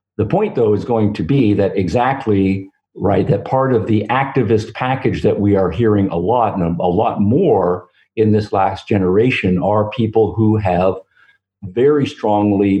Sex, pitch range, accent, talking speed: male, 95-115 Hz, American, 170 wpm